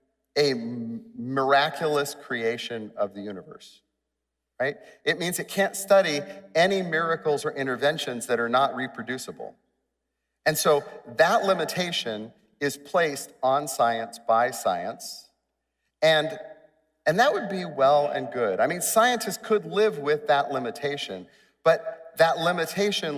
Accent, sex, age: American, male, 40-59